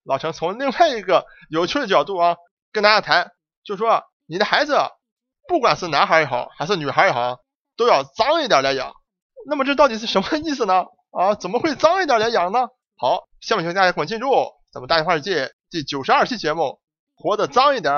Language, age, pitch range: Chinese, 20-39, 165-265 Hz